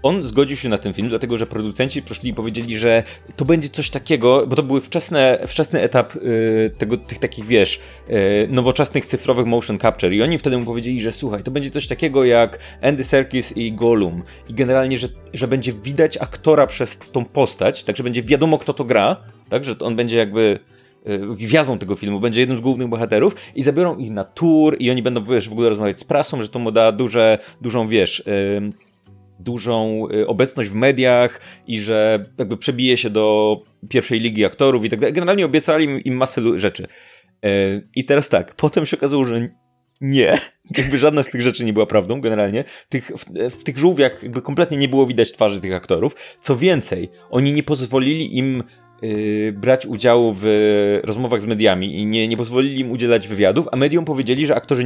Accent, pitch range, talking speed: native, 110-135 Hz, 190 wpm